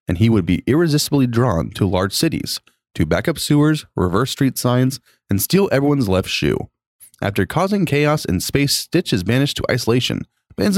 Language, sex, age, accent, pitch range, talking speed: English, male, 30-49, American, 100-145 Hz, 180 wpm